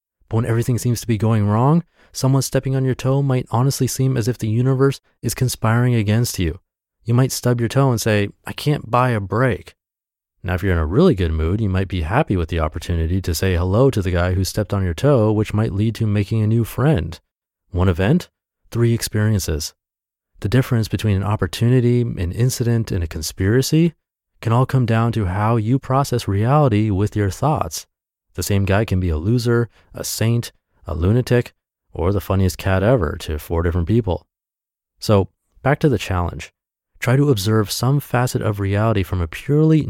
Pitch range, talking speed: 90-125 Hz, 195 wpm